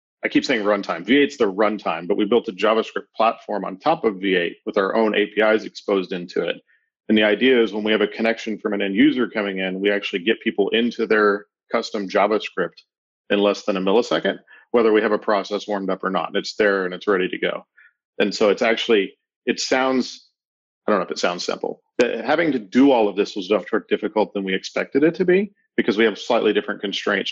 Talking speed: 230 wpm